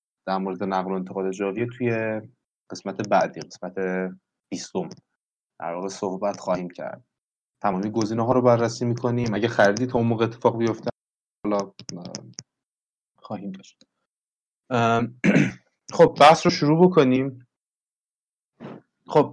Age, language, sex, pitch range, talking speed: 30-49, Persian, male, 100-125 Hz, 115 wpm